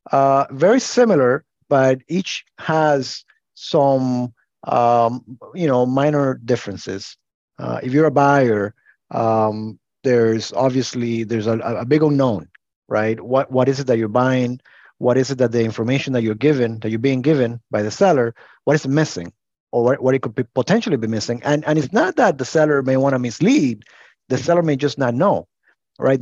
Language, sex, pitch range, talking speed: English, male, 120-150 Hz, 180 wpm